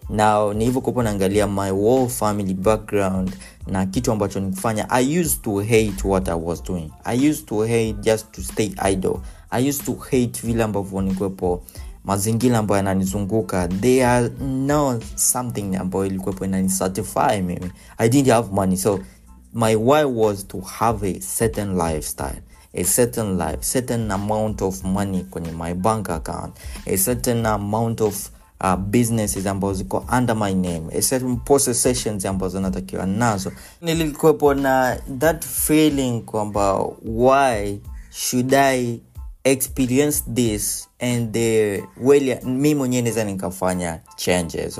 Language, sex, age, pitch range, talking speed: Swahili, male, 20-39, 95-125 Hz, 135 wpm